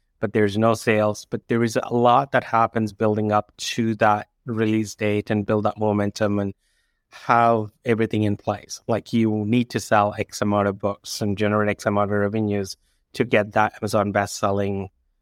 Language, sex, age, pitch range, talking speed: English, male, 30-49, 105-115 Hz, 185 wpm